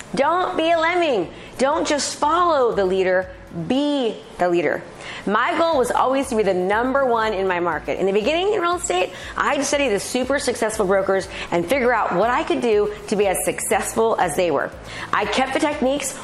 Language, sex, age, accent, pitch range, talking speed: English, female, 30-49, American, 195-275 Hz, 205 wpm